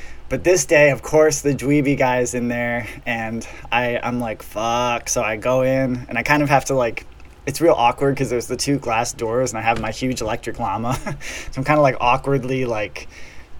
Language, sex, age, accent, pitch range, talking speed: English, male, 20-39, American, 115-135 Hz, 215 wpm